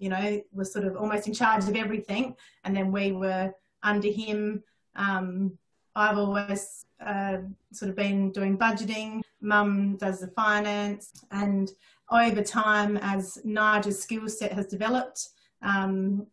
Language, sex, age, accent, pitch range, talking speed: English, female, 30-49, Australian, 190-210 Hz, 145 wpm